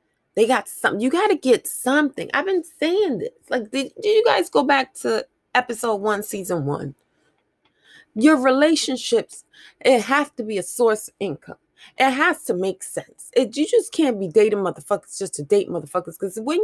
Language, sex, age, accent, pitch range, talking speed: English, female, 30-49, American, 200-295 Hz, 180 wpm